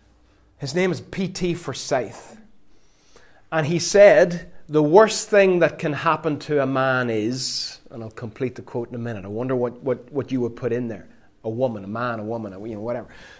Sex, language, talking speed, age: male, English, 200 wpm, 30-49